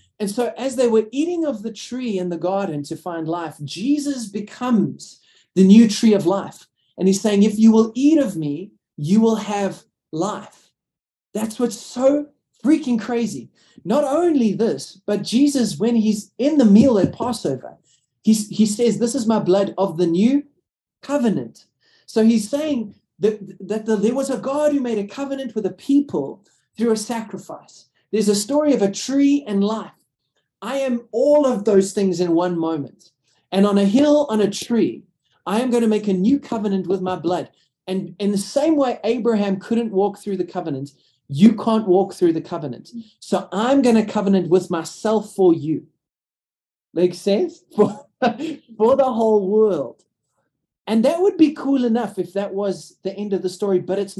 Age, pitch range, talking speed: 30-49, 190-245 Hz, 185 wpm